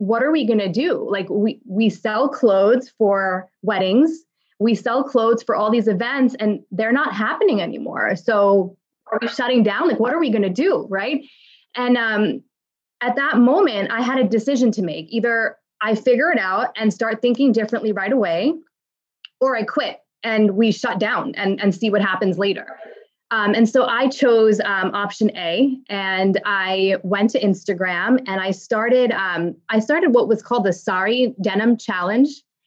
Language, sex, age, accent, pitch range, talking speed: English, female, 20-39, American, 200-245 Hz, 180 wpm